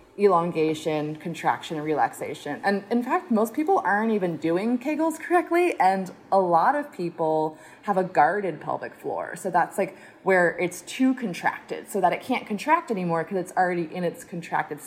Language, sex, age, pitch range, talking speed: English, female, 20-39, 165-240 Hz, 175 wpm